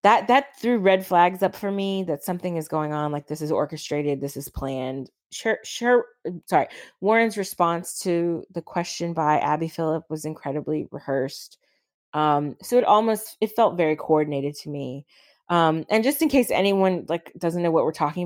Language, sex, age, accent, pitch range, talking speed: English, female, 20-39, American, 145-185 Hz, 185 wpm